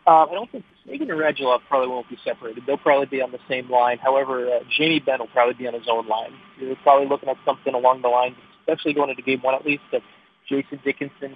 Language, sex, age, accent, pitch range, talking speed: English, male, 20-39, American, 125-145 Hz, 255 wpm